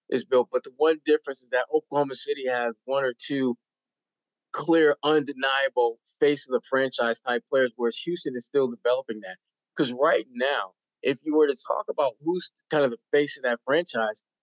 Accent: American